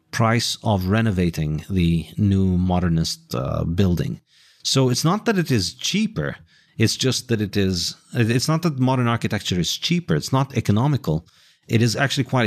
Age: 40-59